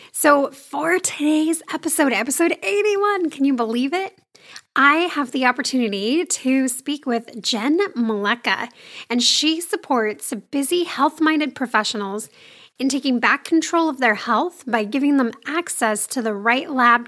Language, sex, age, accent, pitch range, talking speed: English, female, 10-29, American, 230-305 Hz, 140 wpm